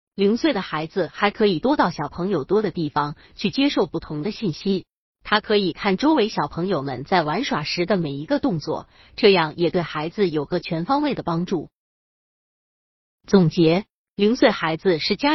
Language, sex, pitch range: Chinese, female, 165-245 Hz